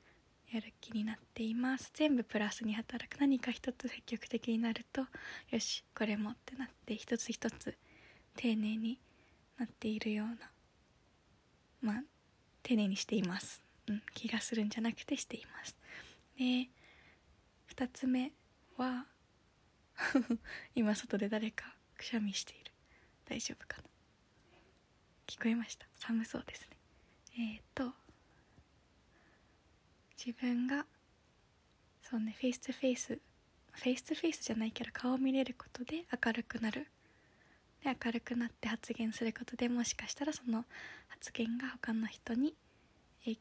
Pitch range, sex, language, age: 225-255 Hz, female, Japanese, 20-39